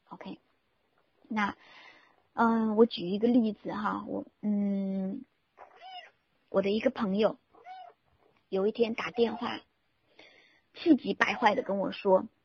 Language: Chinese